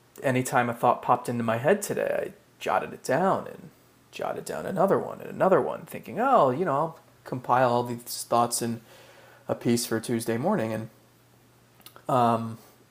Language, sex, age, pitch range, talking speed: English, male, 30-49, 120-140 Hz, 170 wpm